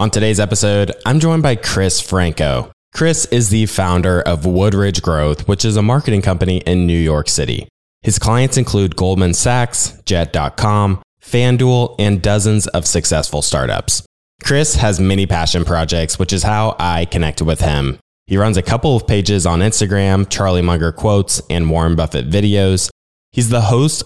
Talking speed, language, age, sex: 165 wpm, English, 20-39, male